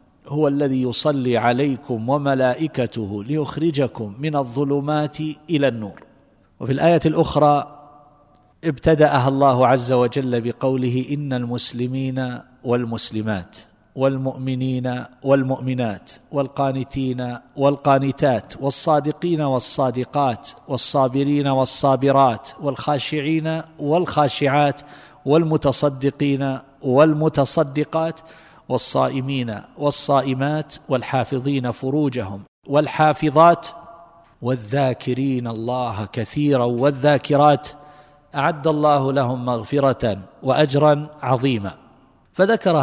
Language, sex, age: Arabic, male, 50-69